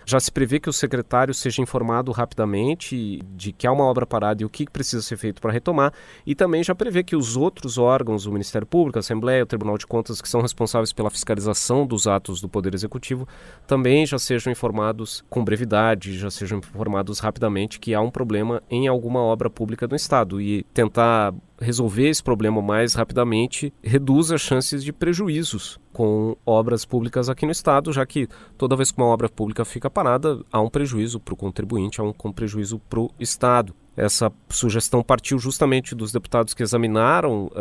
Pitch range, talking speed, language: 105-135 Hz, 190 wpm, Portuguese